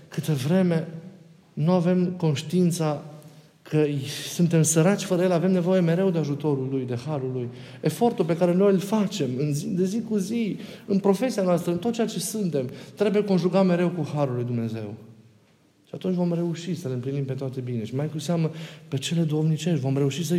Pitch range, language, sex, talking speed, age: 115-160 Hz, Romanian, male, 190 wpm, 50-69